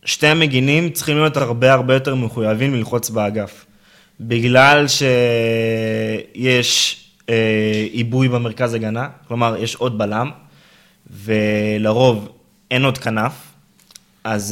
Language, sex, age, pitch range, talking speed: Hebrew, male, 20-39, 110-140 Hz, 105 wpm